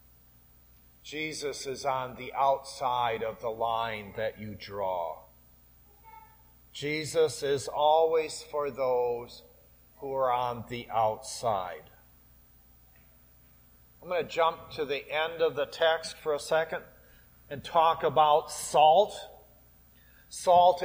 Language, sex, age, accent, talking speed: English, male, 50-69, American, 110 wpm